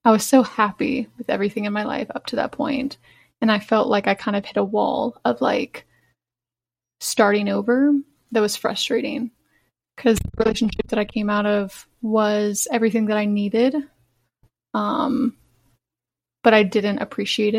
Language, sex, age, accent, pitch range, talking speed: English, female, 20-39, American, 210-255 Hz, 165 wpm